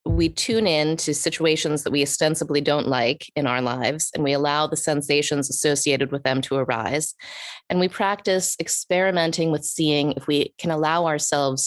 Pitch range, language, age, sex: 140-175 Hz, English, 20-39, female